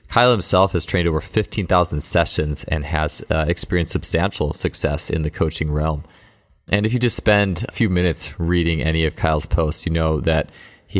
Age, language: 20-39, English